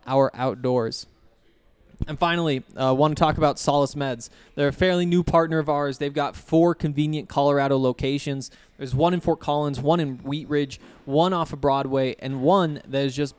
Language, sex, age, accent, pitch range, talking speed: English, male, 20-39, American, 140-170 Hz, 195 wpm